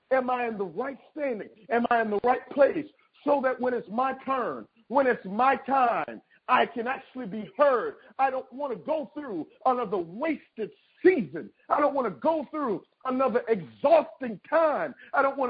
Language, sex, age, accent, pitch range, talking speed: English, male, 50-69, American, 235-310 Hz, 185 wpm